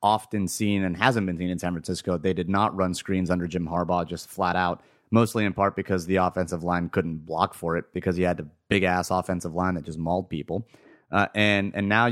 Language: English